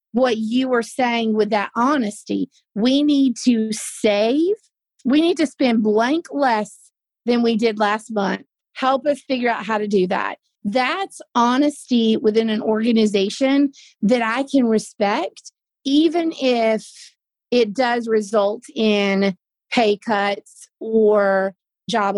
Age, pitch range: 30-49, 210-255 Hz